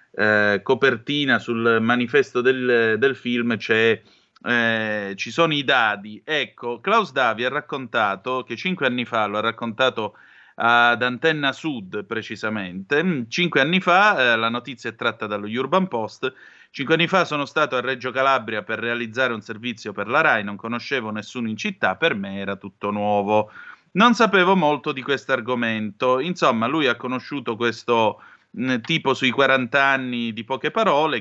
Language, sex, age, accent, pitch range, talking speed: Italian, male, 30-49, native, 110-150 Hz, 160 wpm